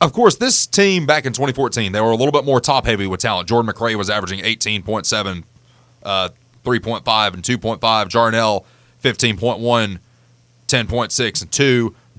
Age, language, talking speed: 30-49, English, 130 wpm